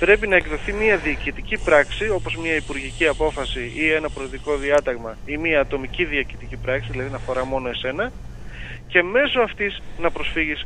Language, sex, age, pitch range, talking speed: Greek, male, 30-49, 125-175 Hz, 165 wpm